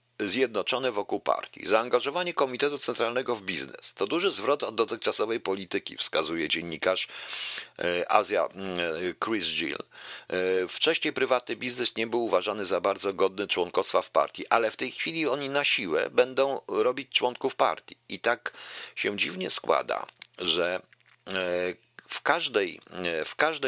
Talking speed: 130 wpm